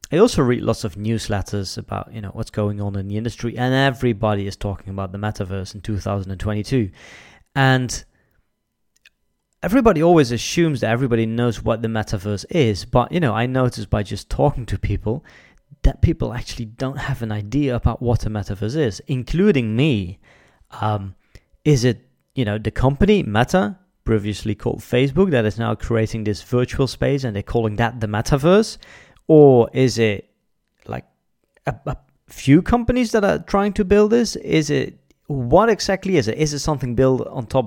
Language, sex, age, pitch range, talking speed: English, male, 20-39, 105-140 Hz, 175 wpm